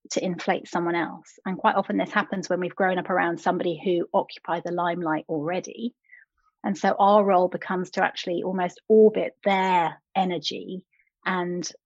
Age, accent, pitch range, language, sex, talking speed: 30-49, British, 175-210 Hz, English, female, 160 wpm